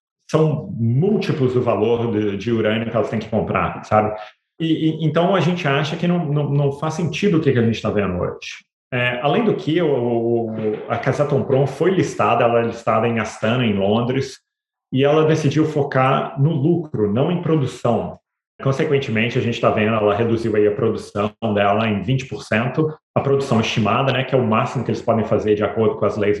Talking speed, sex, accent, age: 200 wpm, male, Brazilian, 30-49